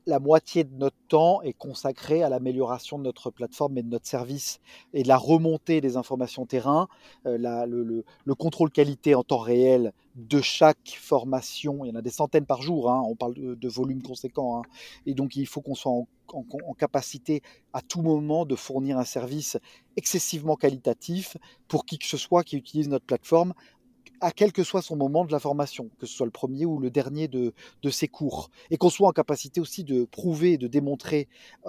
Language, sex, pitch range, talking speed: French, male, 125-160 Hz, 210 wpm